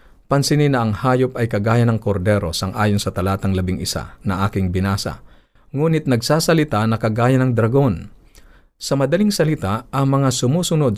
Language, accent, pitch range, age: Filipino, native, 105-135 Hz, 50-69